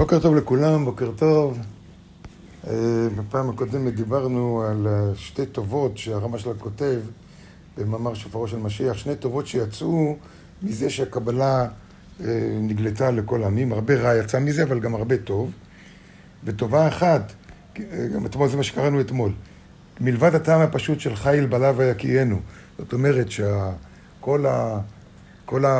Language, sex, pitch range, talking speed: Hebrew, male, 110-145 Hz, 125 wpm